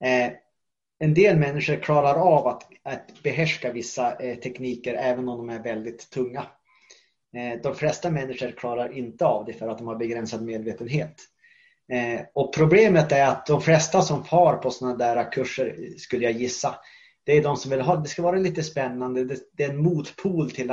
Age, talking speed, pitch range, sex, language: 30-49, 190 wpm, 125-150 Hz, male, Swedish